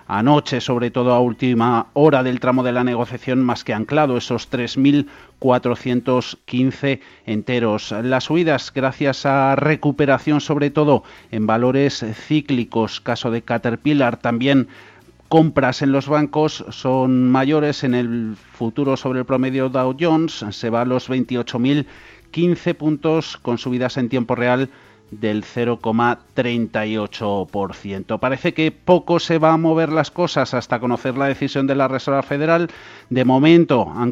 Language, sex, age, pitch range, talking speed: Spanish, male, 40-59, 120-145 Hz, 135 wpm